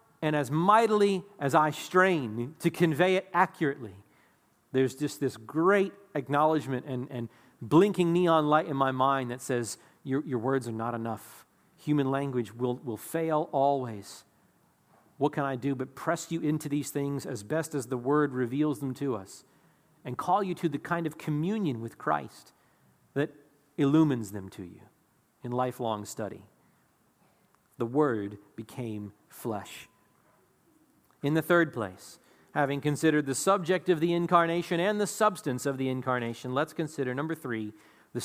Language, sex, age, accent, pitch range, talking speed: English, male, 40-59, American, 125-185 Hz, 155 wpm